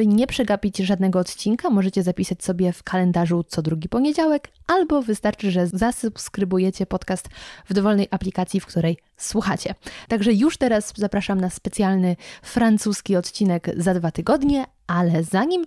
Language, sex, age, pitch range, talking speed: Polish, female, 20-39, 185-230 Hz, 140 wpm